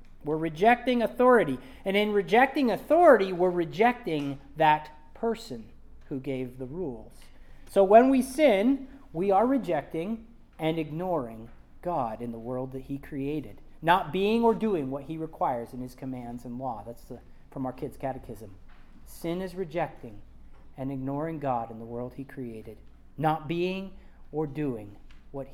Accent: American